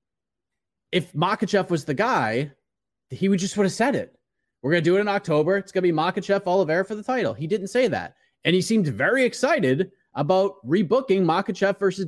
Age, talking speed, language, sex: 30-49, 200 wpm, English, male